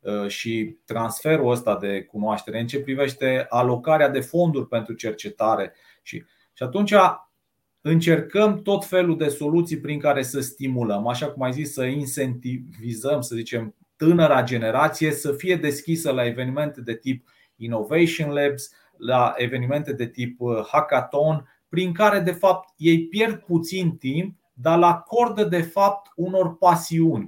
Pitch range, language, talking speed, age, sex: 130-175 Hz, Romanian, 140 wpm, 30-49, male